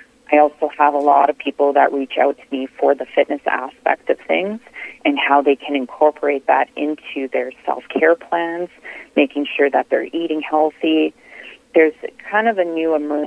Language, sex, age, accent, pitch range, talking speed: English, female, 30-49, American, 140-160 Hz, 175 wpm